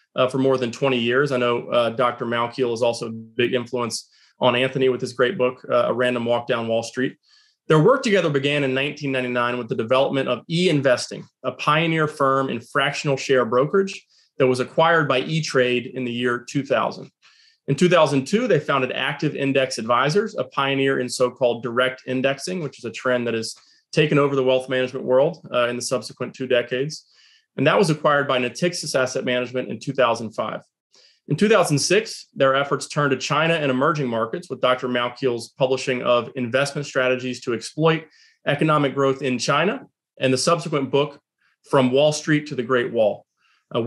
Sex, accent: male, American